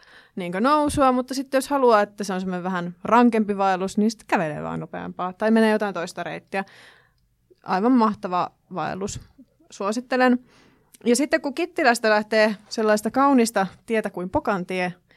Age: 20-39